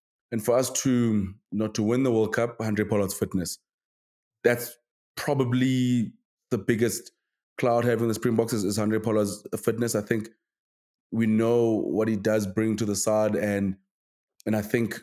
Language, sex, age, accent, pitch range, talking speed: English, male, 20-39, South African, 100-115 Hz, 165 wpm